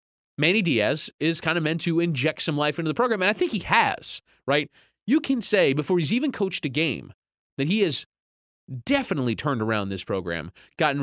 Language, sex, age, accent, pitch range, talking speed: English, male, 30-49, American, 120-195 Hz, 200 wpm